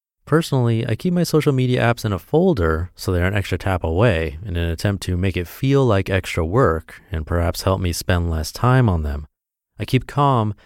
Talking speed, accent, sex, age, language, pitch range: 215 wpm, American, male, 30-49, English, 85-120 Hz